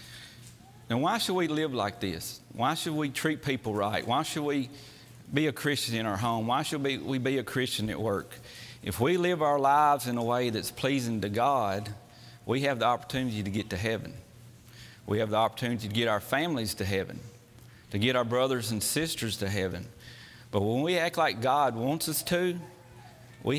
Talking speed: 200 wpm